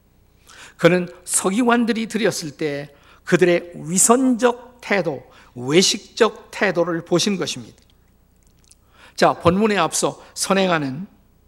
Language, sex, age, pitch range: Korean, male, 50-69, 160-205 Hz